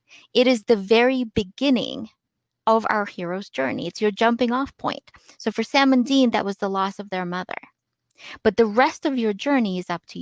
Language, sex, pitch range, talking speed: English, female, 195-250 Hz, 205 wpm